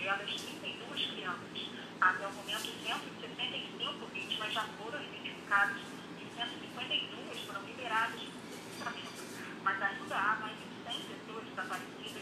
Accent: Brazilian